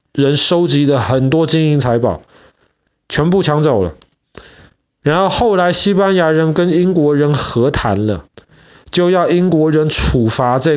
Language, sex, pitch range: Chinese, male, 120-160 Hz